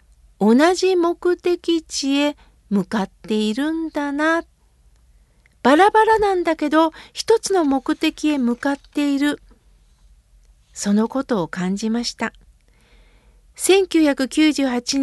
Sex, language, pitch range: female, Japanese, 220-315 Hz